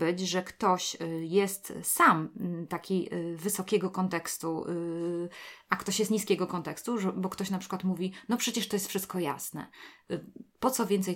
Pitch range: 175-210 Hz